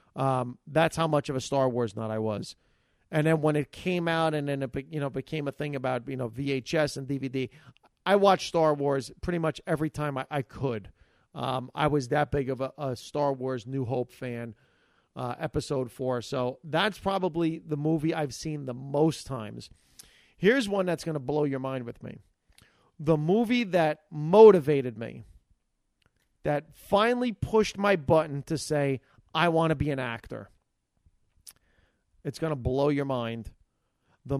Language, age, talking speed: English, 40-59, 180 wpm